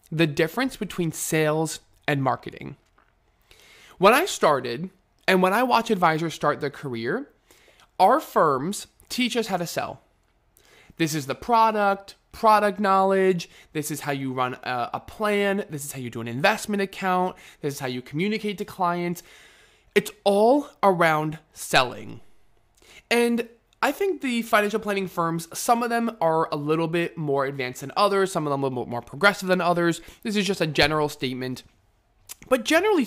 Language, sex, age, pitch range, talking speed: English, male, 20-39, 150-210 Hz, 165 wpm